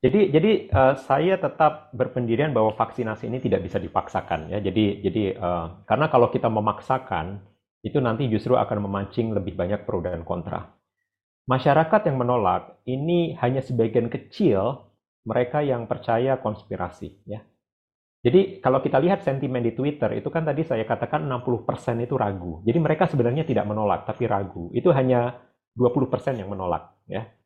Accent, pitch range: native, 105-140 Hz